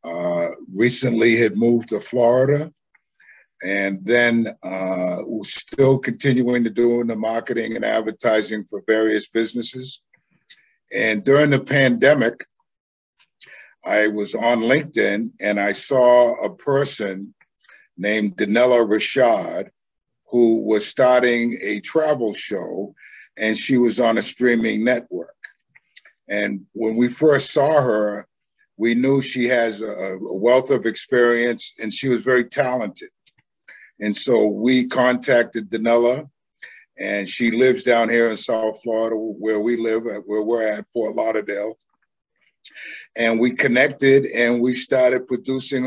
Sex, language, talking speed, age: male, English, 130 wpm, 50-69